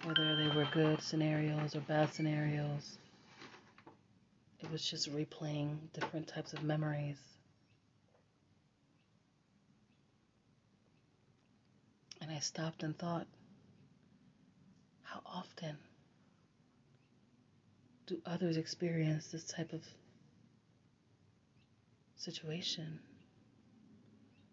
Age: 30-49